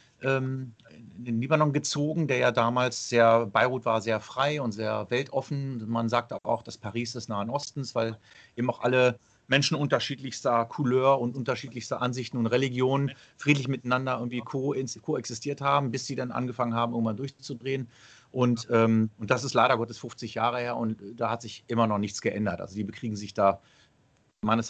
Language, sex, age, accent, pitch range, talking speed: German, male, 40-59, German, 115-135 Hz, 170 wpm